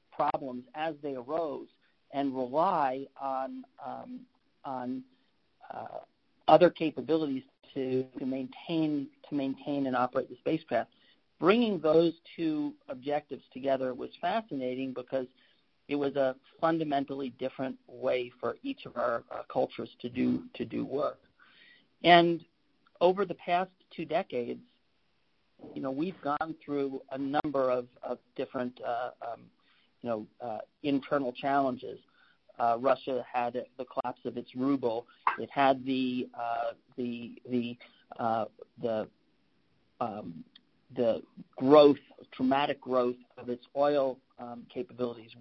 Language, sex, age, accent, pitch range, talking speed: English, male, 50-69, American, 125-155 Hz, 125 wpm